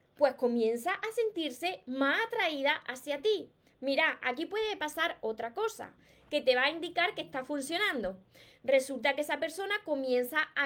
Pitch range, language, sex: 275-360 Hz, Spanish, female